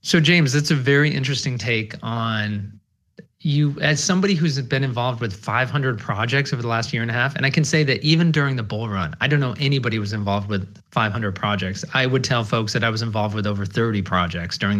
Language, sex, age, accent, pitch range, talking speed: English, male, 30-49, American, 110-150 Hz, 225 wpm